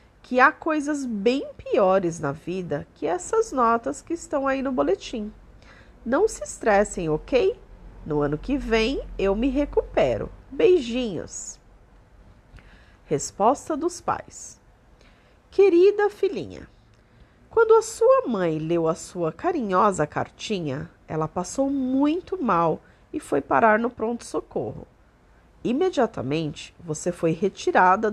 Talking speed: 115 wpm